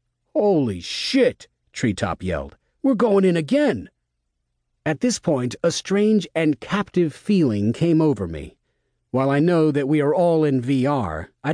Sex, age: male, 40-59